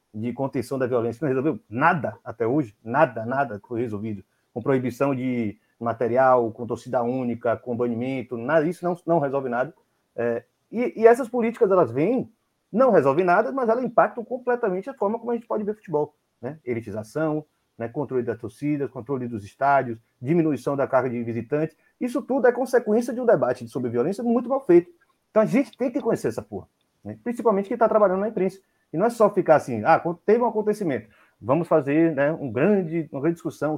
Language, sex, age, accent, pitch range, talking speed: Portuguese, male, 30-49, Brazilian, 125-205 Hz, 190 wpm